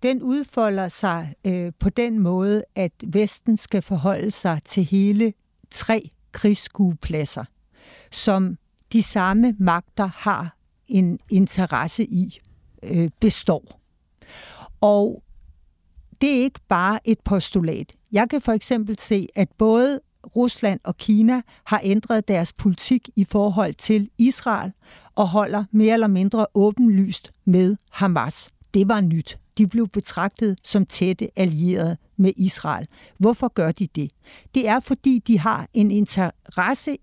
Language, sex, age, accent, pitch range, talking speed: Danish, female, 60-79, native, 185-225 Hz, 130 wpm